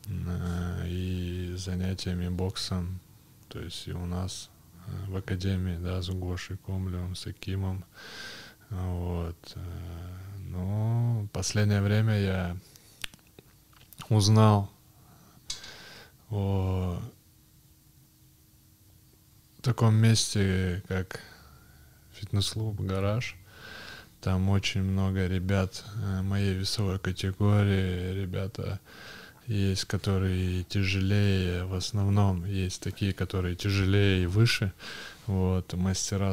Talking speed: 85 wpm